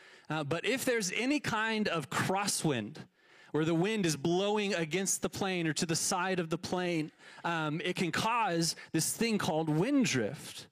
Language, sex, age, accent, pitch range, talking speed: English, male, 30-49, American, 165-220 Hz, 180 wpm